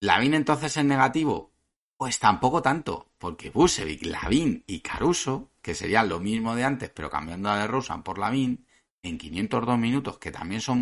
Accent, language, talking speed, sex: Spanish, Spanish, 175 wpm, male